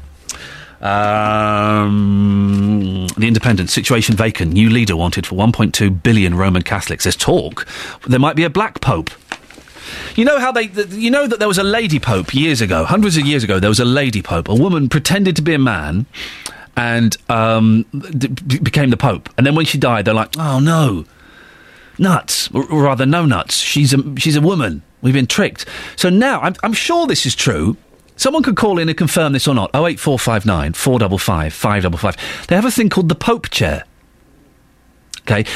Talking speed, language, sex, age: 180 wpm, English, male, 40-59